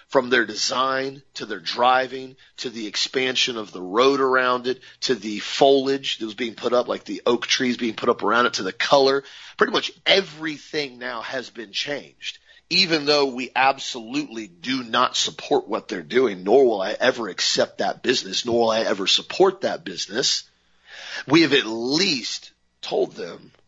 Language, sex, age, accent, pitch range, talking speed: English, male, 30-49, American, 115-145 Hz, 180 wpm